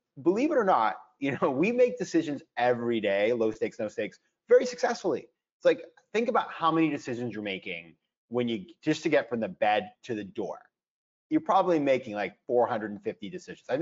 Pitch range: 120-190 Hz